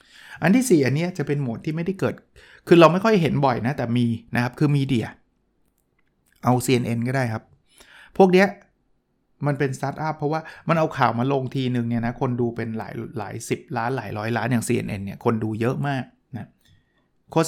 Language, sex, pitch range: Thai, male, 120-150 Hz